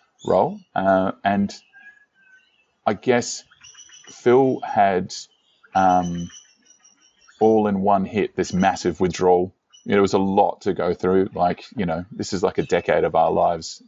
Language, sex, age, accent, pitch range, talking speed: English, male, 20-39, Australian, 90-100 Hz, 145 wpm